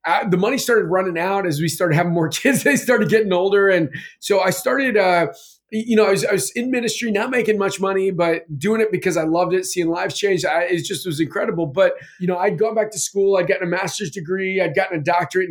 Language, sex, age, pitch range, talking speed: English, male, 30-49, 165-195 Hz, 240 wpm